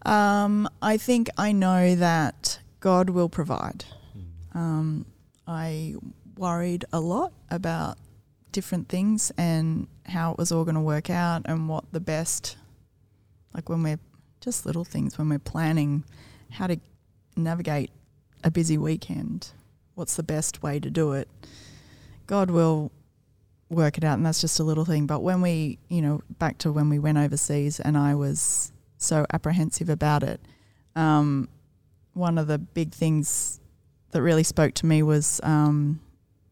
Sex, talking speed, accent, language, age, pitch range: female, 155 wpm, Australian, English, 30-49, 140-170 Hz